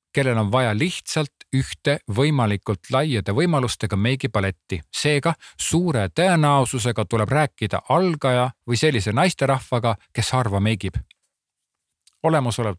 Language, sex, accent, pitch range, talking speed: Czech, male, Finnish, 105-135 Hz, 110 wpm